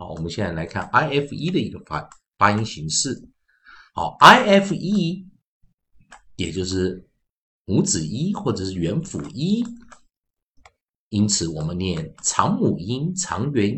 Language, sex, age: Chinese, male, 50-69